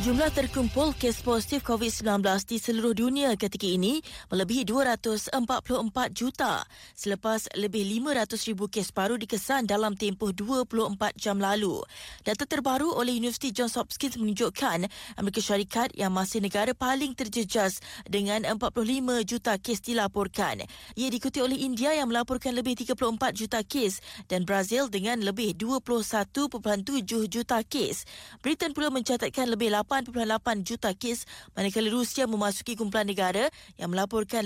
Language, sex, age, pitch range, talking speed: Malay, female, 20-39, 210-250 Hz, 130 wpm